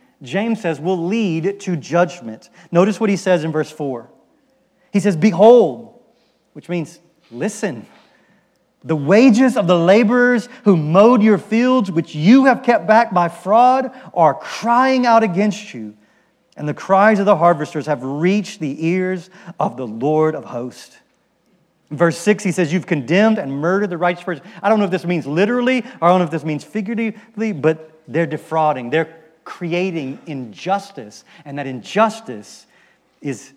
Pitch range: 155-210 Hz